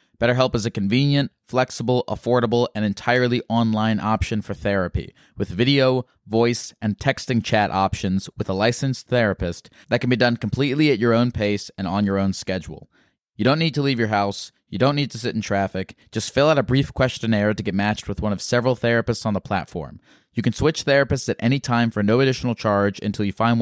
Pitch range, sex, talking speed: 100-125 Hz, male, 210 wpm